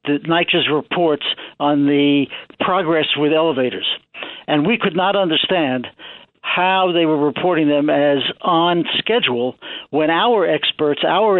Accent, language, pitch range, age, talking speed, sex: American, English, 150-190 Hz, 60-79, 130 wpm, male